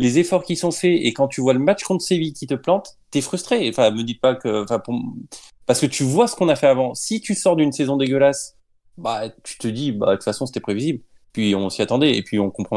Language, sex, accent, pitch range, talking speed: French, male, French, 120-175 Hz, 275 wpm